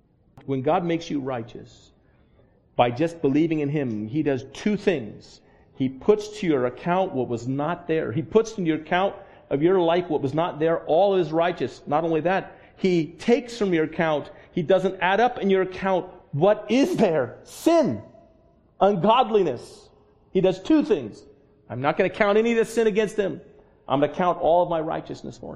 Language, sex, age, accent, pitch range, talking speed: English, male, 40-59, American, 140-170 Hz, 195 wpm